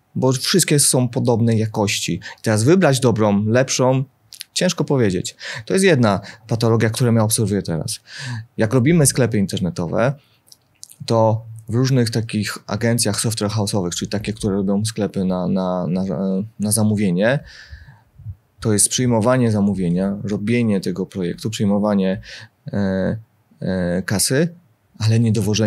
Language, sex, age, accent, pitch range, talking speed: Polish, male, 30-49, native, 100-120 Hz, 110 wpm